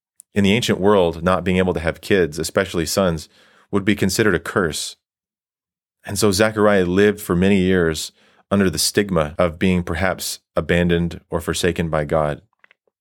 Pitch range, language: 85-100 Hz, English